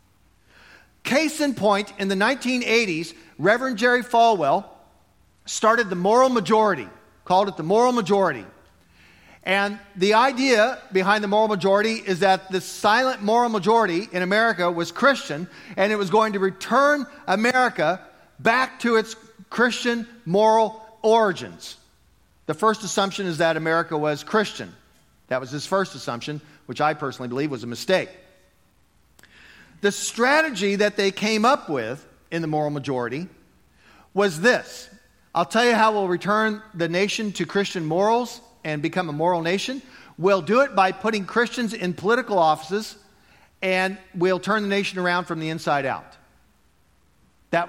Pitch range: 155-220 Hz